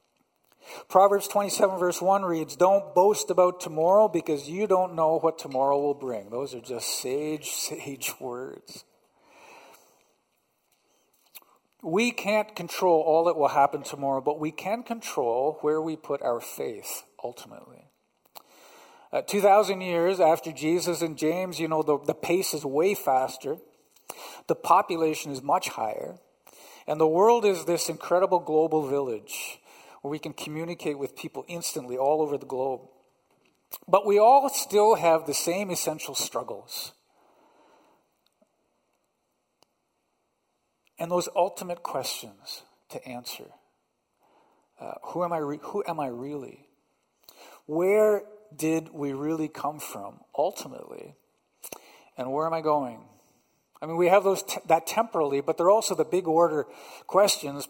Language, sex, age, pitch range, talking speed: English, male, 50-69, 150-190 Hz, 135 wpm